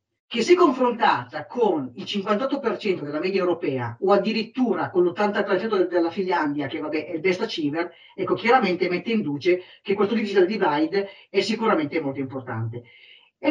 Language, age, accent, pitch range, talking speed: English, 40-59, Italian, 160-255 Hz, 160 wpm